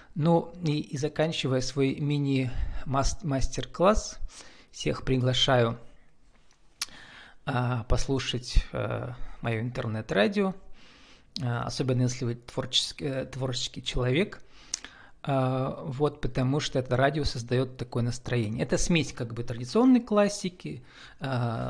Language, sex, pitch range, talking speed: Russian, male, 120-145 Hz, 100 wpm